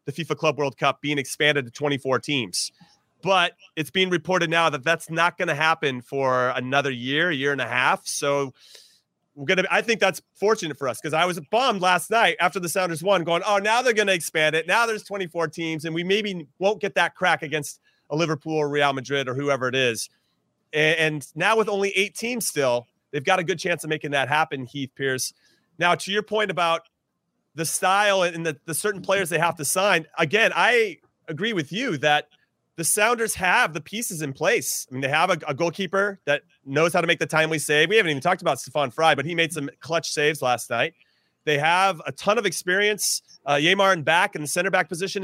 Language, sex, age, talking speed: English, male, 30-49, 225 wpm